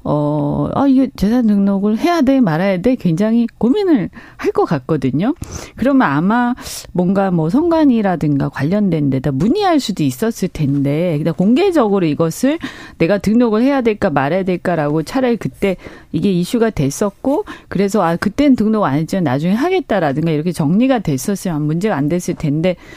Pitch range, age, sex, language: 165-260 Hz, 40-59, female, Korean